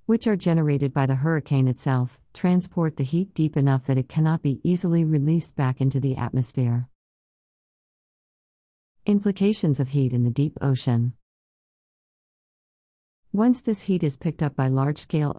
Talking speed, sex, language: 145 wpm, female, English